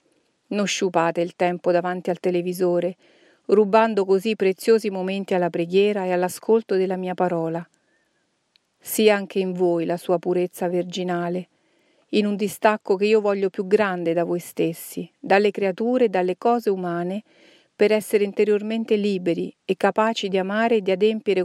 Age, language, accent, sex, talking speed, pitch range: 40-59, Italian, native, female, 150 wpm, 180-210 Hz